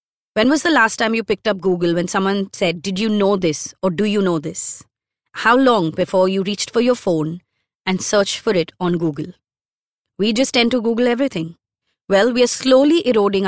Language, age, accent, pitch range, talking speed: English, 30-49, Indian, 175-230 Hz, 205 wpm